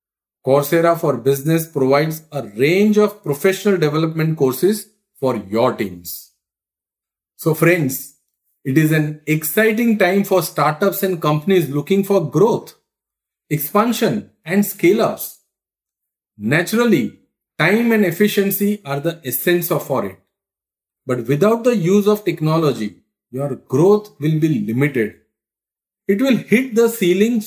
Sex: male